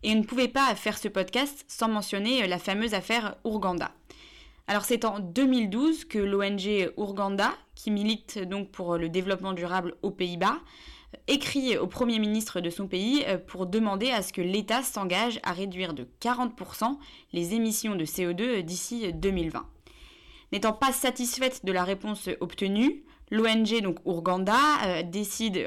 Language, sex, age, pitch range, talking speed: French, female, 20-39, 185-230 Hz, 150 wpm